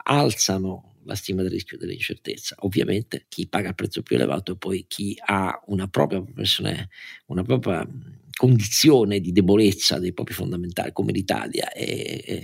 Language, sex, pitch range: Italian, male, 100-125 Hz